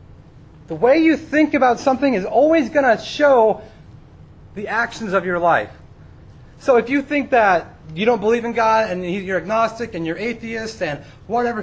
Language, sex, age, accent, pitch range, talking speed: English, male, 30-49, American, 155-240 Hz, 175 wpm